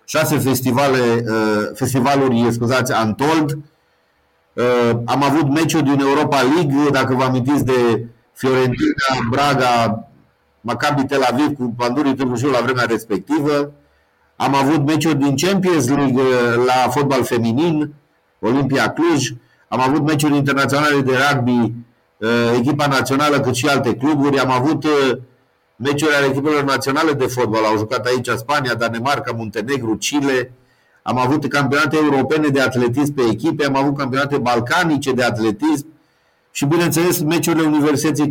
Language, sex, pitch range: Romanian, male, 115-145 Hz